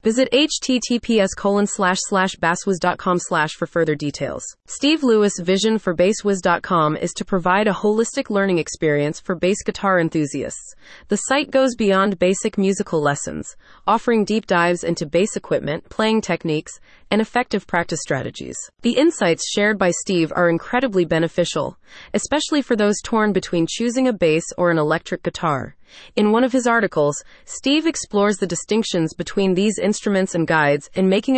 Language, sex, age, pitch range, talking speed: English, female, 30-49, 170-220 Hz, 150 wpm